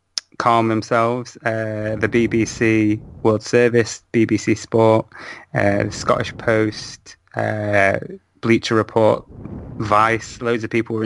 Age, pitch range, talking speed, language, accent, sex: 20-39, 110-120 Hz, 115 wpm, English, British, male